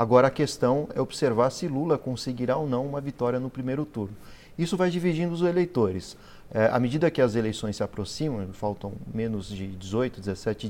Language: English